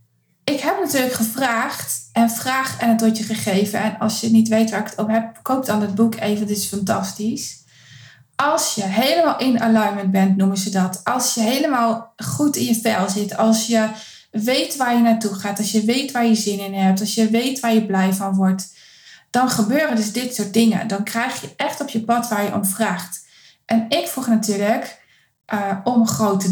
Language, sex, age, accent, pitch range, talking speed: Dutch, female, 20-39, Dutch, 205-250 Hz, 210 wpm